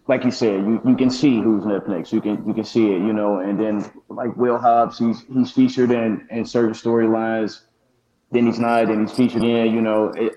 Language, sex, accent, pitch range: English, male, American, 110-120 Hz